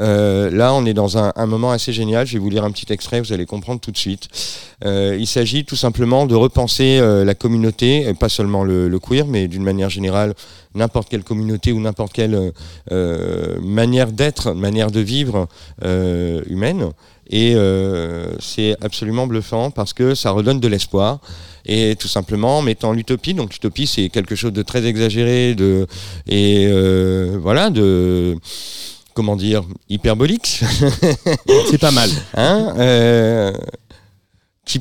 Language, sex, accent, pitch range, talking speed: French, male, French, 100-125 Hz, 165 wpm